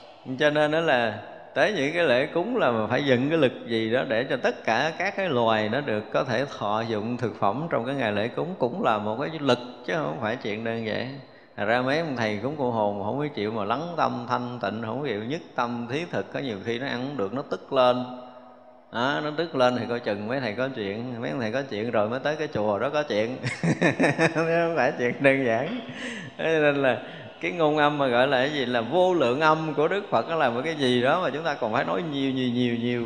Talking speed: 260 wpm